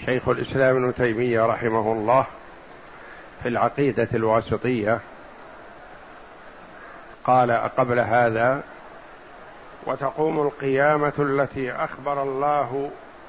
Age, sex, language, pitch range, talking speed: 50-69, male, Arabic, 135-160 Hz, 75 wpm